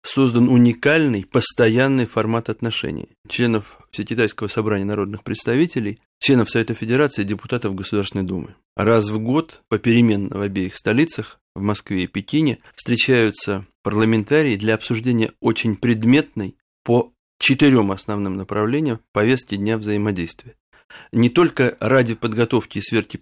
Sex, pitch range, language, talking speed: male, 105-120 Hz, Russian, 120 wpm